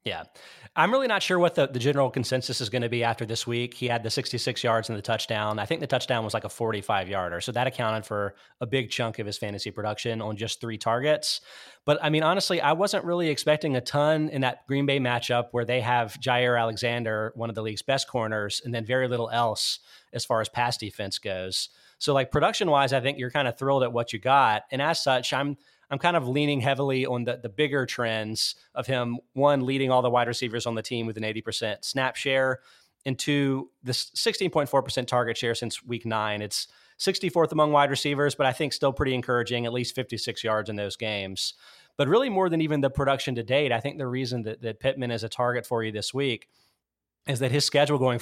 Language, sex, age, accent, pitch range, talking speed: English, male, 30-49, American, 115-135 Hz, 230 wpm